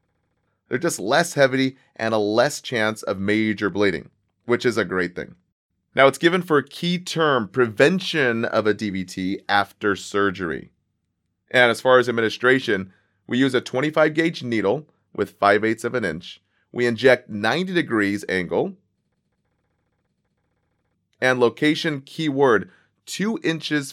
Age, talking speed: 30-49, 140 wpm